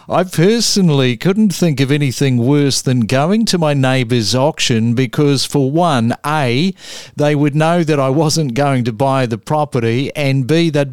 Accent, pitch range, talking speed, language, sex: Australian, 125-160 Hz, 170 wpm, English, male